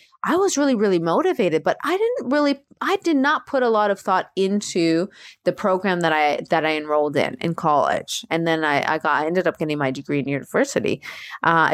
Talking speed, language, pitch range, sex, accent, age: 215 wpm, English, 160-205 Hz, female, American, 30-49